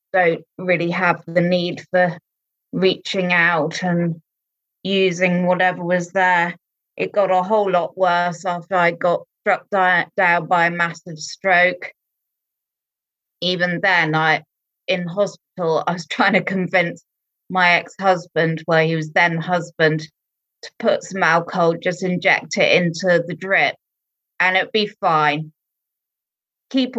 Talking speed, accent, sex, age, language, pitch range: 135 wpm, British, female, 20-39, English, 155-180 Hz